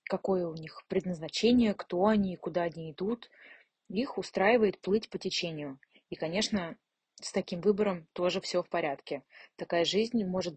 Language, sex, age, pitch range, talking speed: Russian, female, 20-39, 170-205 Hz, 155 wpm